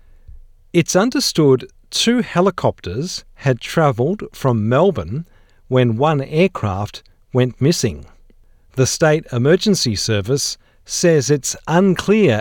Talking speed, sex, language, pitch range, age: 95 wpm, male, English, 105-150 Hz, 50-69